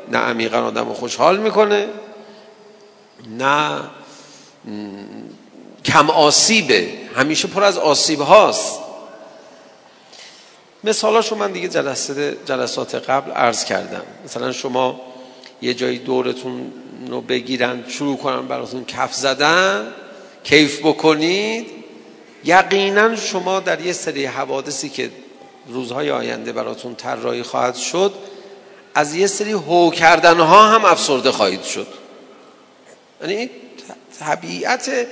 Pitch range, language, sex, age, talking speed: 135-200 Hz, Persian, male, 50-69, 100 wpm